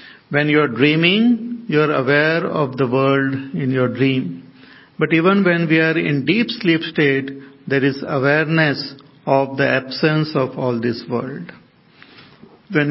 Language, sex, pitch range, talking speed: English, male, 135-175 Hz, 155 wpm